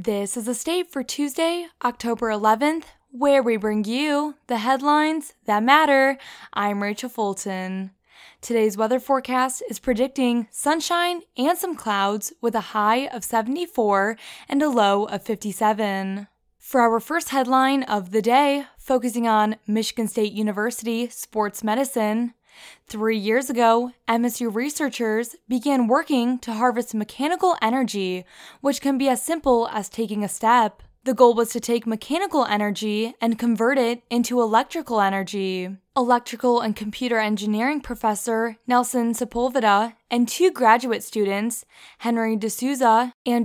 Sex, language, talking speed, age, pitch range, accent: female, English, 135 wpm, 10-29, 215-270 Hz, American